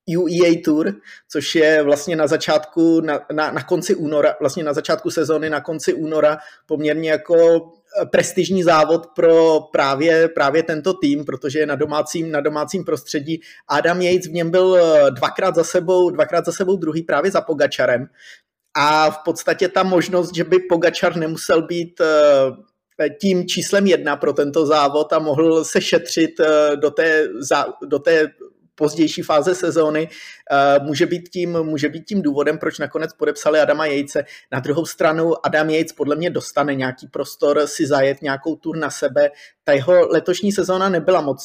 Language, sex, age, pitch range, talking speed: Czech, male, 30-49, 150-175 Hz, 160 wpm